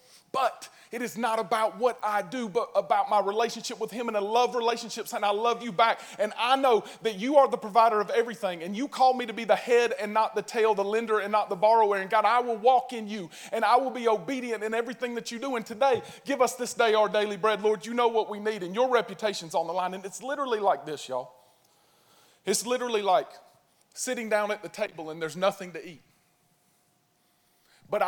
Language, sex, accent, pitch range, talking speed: English, male, American, 180-235 Hz, 235 wpm